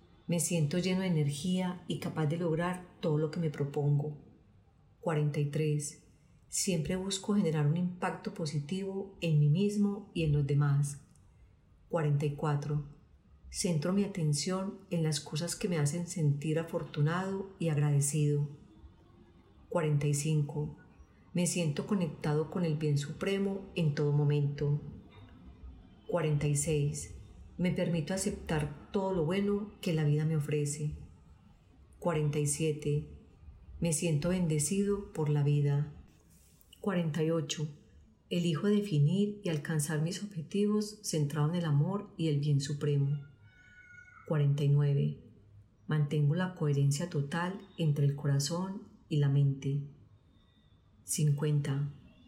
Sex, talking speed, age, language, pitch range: female, 115 wpm, 40-59, Spanish, 145-175 Hz